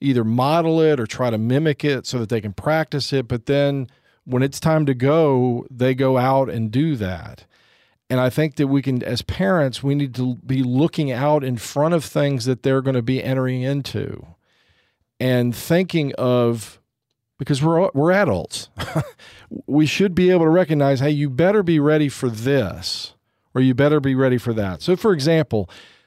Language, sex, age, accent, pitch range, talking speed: English, male, 40-59, American, 110-140 Hz, 190 wpm